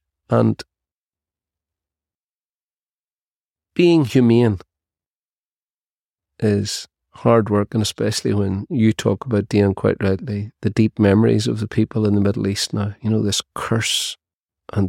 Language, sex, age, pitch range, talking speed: English, male, 40-59, 95-115 Hz, 125 wpm